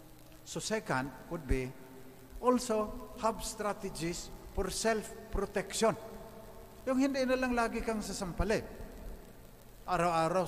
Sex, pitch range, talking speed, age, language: male, 130-175 Hz, 90 wpm, 50-69, English